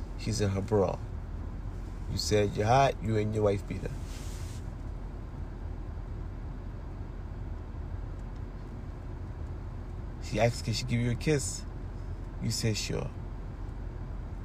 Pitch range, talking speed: 95-135 Hz, 105 wpm